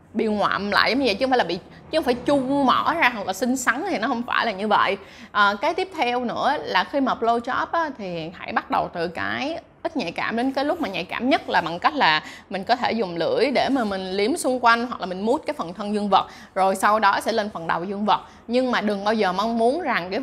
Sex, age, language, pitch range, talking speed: female, 20-39, Vietnamese, 200-255 Hz, 285 wpm